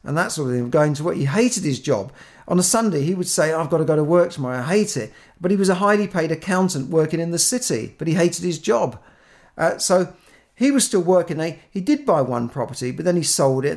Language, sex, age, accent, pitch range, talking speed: English, male, 50-69, British, 135-180 Hz, 270 wpm